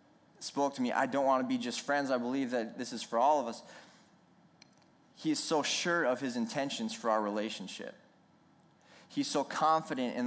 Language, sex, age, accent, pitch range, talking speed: English, male, 20-39, American, 120-150 Hz, 195 wpm